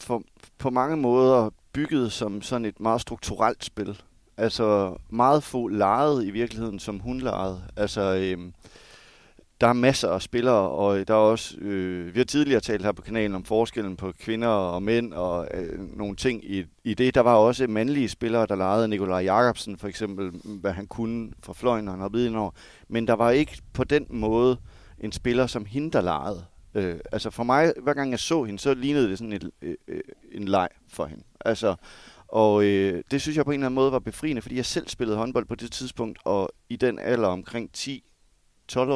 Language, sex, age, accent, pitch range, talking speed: Danish, male, 30-49, native, 100-120 Hz, 200 wpm